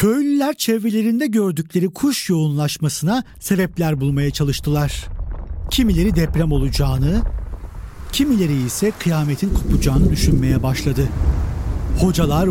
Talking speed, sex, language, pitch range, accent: 85 wpm, male, Turkish, 130-180 Hz, native